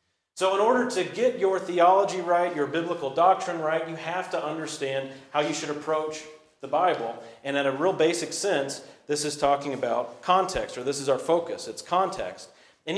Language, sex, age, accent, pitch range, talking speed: English, male, 40-59, American, 150-215 Hz, 190 wpm